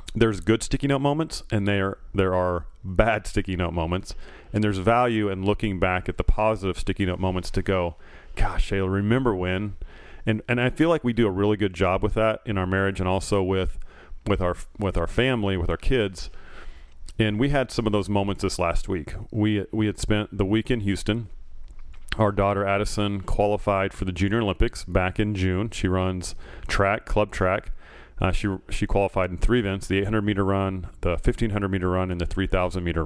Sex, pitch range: male, 90-105 Hz